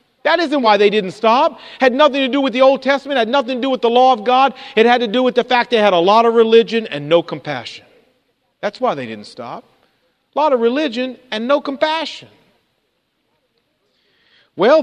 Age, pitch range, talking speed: 50-69, 175-250 Hz, 210 wpm